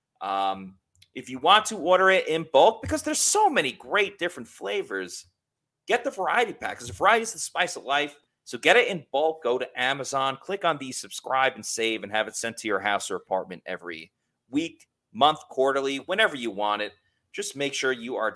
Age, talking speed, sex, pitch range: 30-49, 210 wpm, male, 100-155 Hz